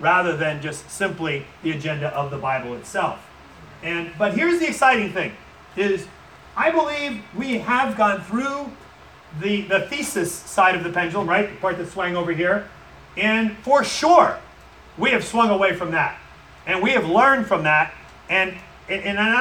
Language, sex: English, male